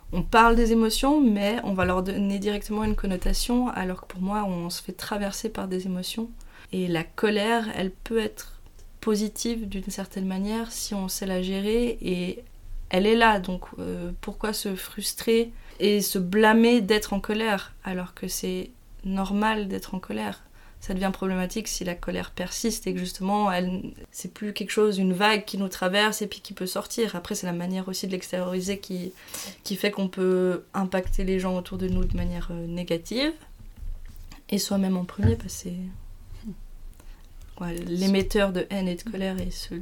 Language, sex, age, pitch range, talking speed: French, female, 20-39, 180-210 Hz, 180 wpm